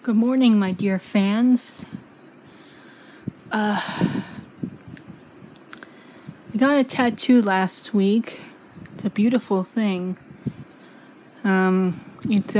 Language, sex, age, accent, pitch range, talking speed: English, female, 30-49, American, 190-230 Hz, 85 wpm